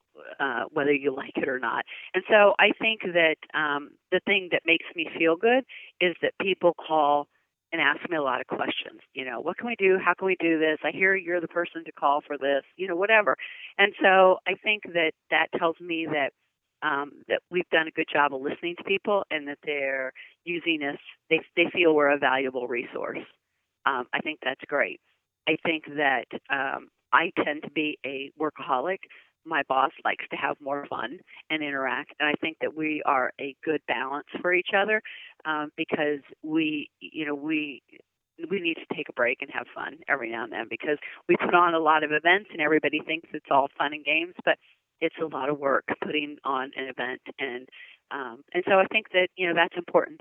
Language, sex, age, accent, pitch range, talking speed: English, female, 40-59, American, 145-185 Hz, 215 wpm